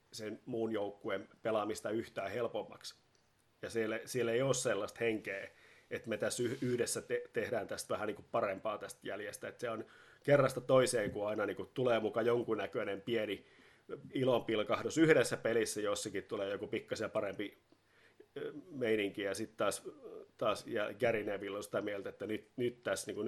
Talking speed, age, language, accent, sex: 160 wpm, 30-49, Finnish, native, male